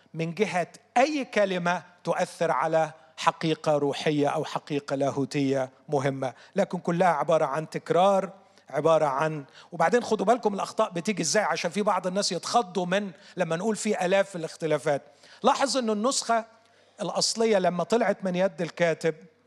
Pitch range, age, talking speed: 170-220 Hz, 40-59, 140 wpm